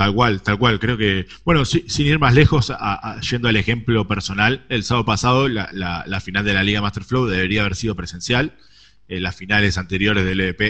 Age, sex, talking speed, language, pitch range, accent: 20-39, male, 225 wpm, Spanish, 95-120 Hz, Argentinian